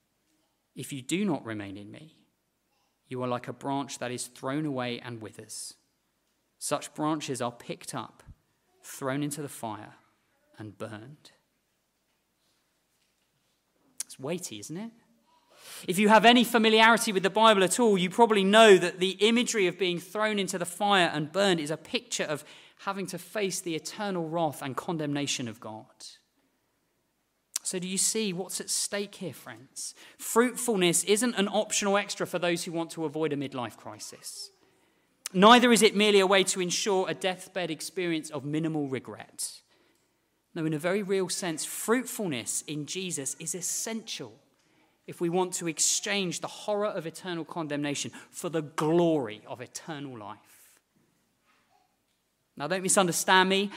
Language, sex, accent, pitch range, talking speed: English, male, British, 150-205 Hz, 155 wpm